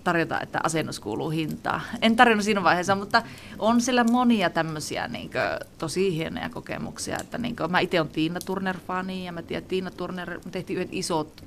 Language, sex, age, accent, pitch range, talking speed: Finnish, female, 30-49, native, 165-210 Hz, 180 wpm